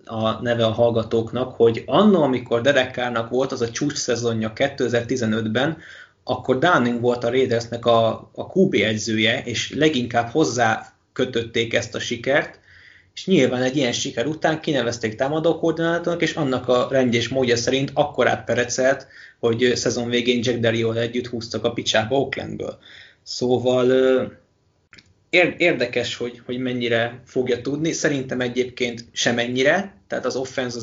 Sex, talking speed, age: male, 140 wpm, 20-39